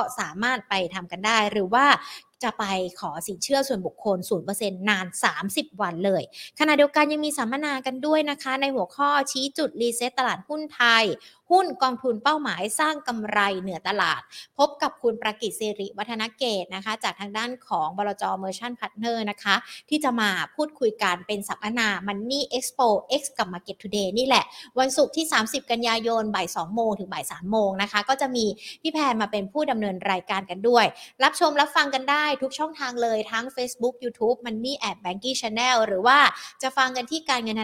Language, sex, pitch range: Thai, female, 210-270 Hz